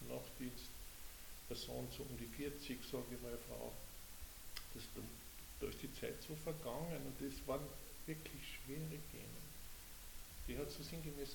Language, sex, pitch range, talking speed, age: German, male, 115-140 Hz, 150 wpm, 50-69